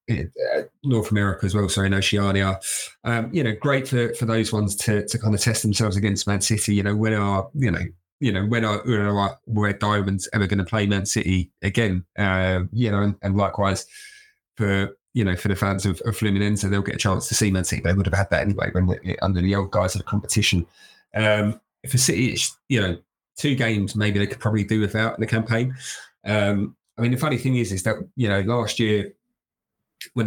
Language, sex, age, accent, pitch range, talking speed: English, male, 30-49, British, 100-115 Hz, 225 wpm